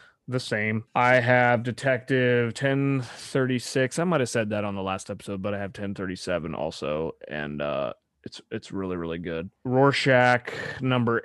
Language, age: English, 30-49